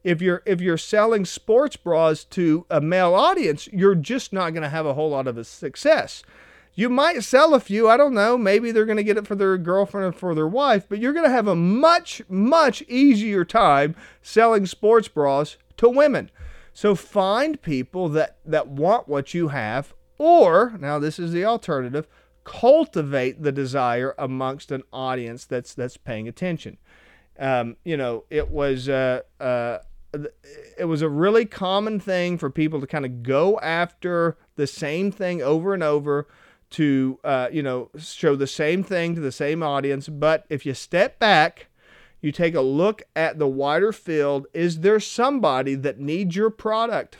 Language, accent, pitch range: English, American, 140-215 Hz